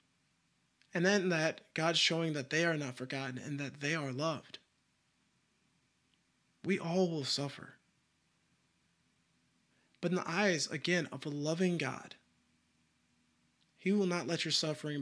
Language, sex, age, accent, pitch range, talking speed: English, male, 20-39, American, 130-175 Hz, 135 wpm